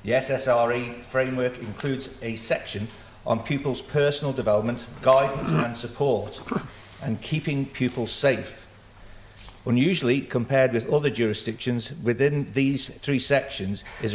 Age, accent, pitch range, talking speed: 40-59, British, 110-135 Hz, 115 wpm